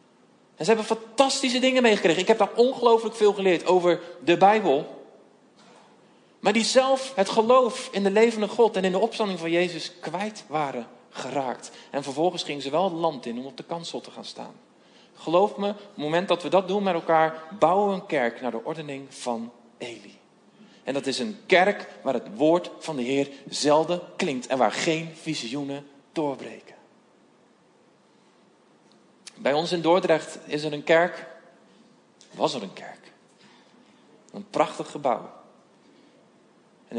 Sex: male